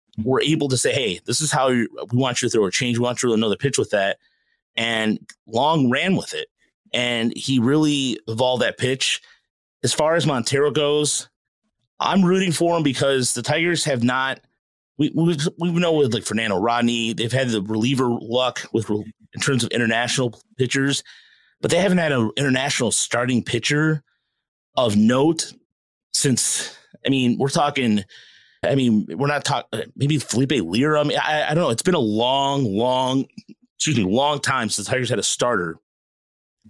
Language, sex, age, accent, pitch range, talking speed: English, male, 30-49, American, 120-150 Hz, 190 wpm